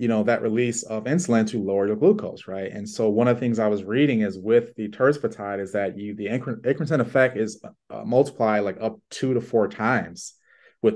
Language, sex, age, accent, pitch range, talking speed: English, male, 30-49, American, 100-120 Hz, 225 wpm